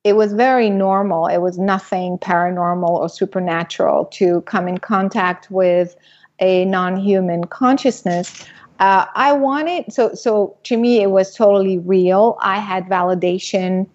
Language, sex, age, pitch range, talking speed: English, female, 30-49, 185-210 Hz, 140 wpm